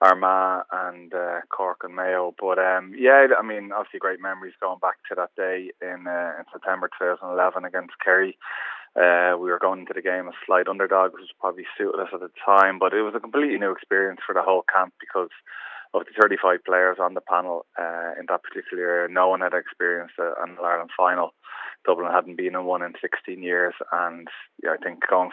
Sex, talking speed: male, 210 wpm